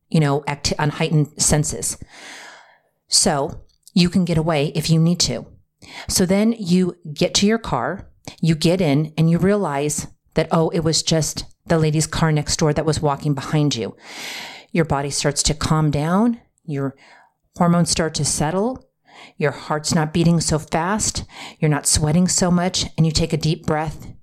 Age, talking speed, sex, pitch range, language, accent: 40-59, 175 wpm, female, 150-175 Hz, English, American